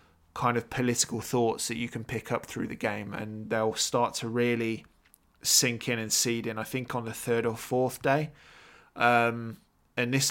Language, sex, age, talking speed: English, male, 20-39, 190 wpm